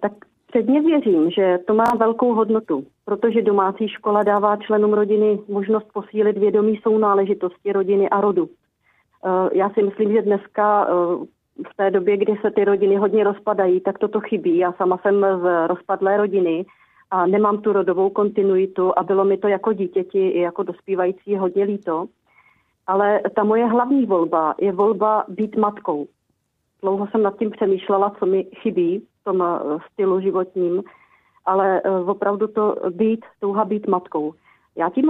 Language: Czech